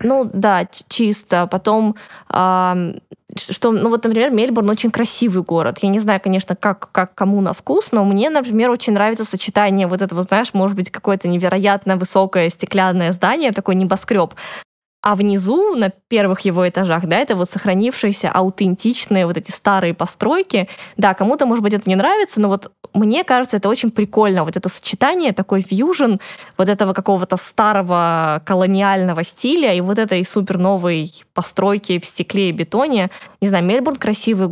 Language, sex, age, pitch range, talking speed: Russian, female, 20-39, 180-210 Hz, 165 wpm